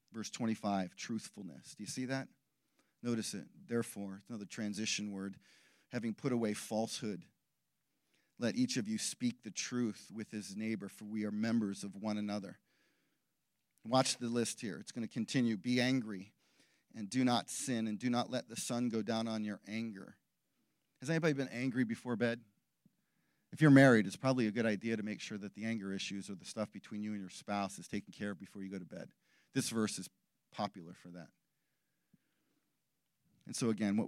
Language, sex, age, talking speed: English, male, 40-59, 190 wpm